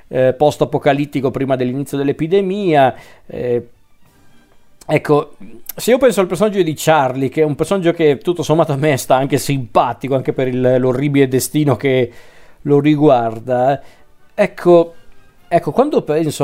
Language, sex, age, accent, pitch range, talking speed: Italian, male, 40-59, native, 130-165 Hz, 140 wpm